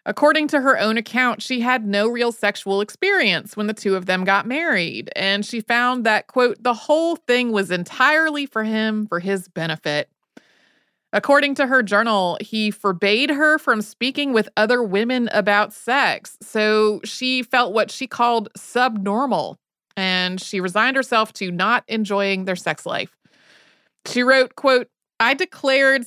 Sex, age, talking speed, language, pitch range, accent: female, 30-49, 160 wpm, English, 195-250 Hz, American